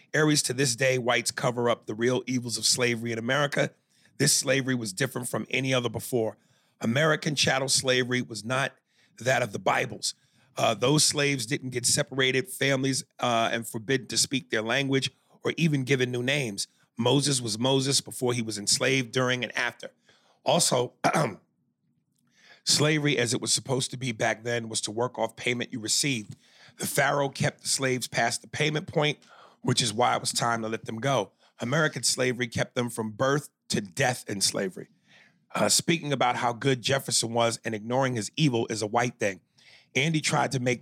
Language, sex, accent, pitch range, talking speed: English, male, American, 115-140 Hz, 185 wpm